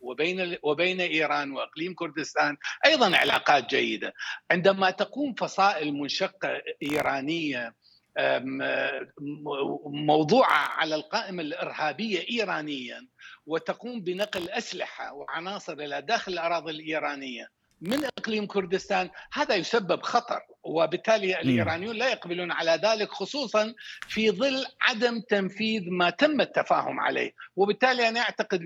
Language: Arabic